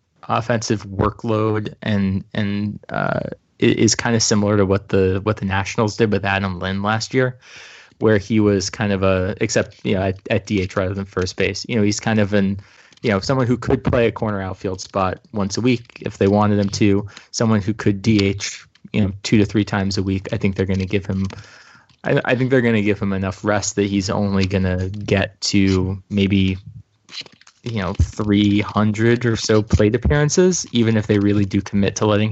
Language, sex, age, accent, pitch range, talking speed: English, male, 20-39, American, 100-115 Hz, 210 wpm